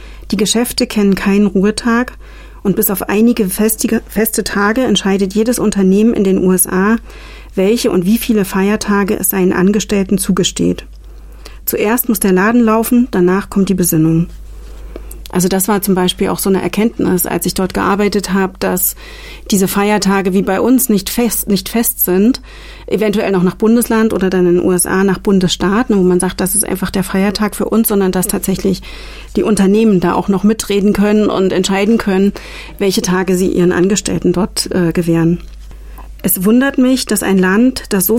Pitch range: 185-220 Hz